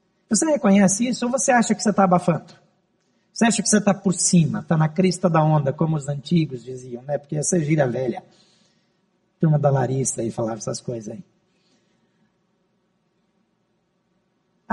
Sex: male